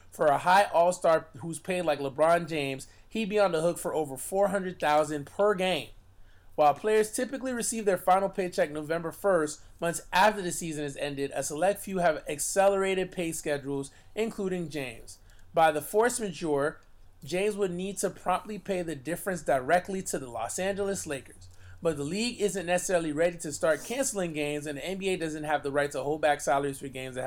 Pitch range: 145-190 Hz